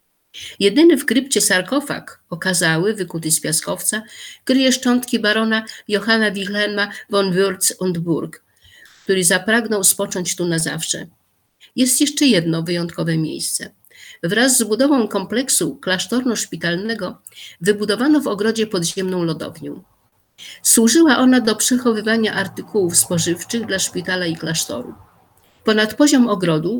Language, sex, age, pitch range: Polish, female, 50-69, 180-230 Hz